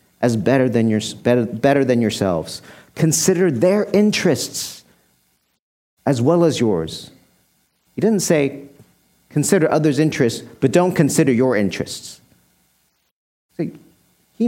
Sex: male